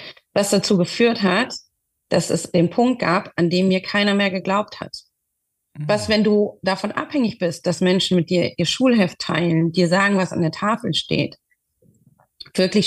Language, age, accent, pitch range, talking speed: German, 30-49, German, 170-205 Hz, 175 wpm